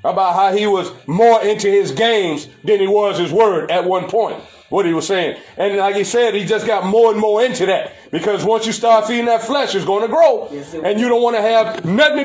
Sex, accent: male, American